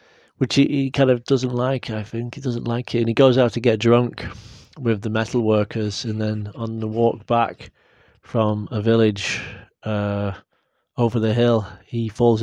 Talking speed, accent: 190 wpm, British